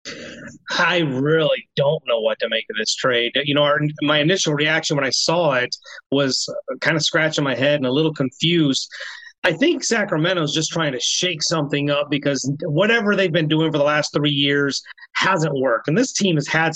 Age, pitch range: 30-49, 145-180 Hz